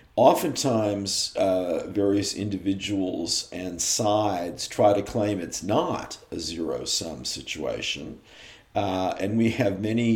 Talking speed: 110 wpm